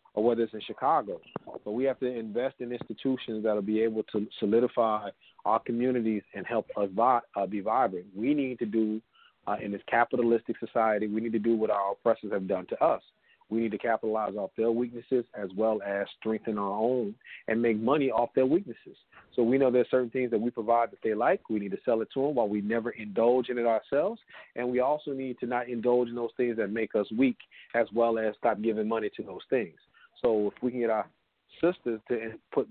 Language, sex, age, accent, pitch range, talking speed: English, male, 40-59, American, 110-120 Hz, 230 wpm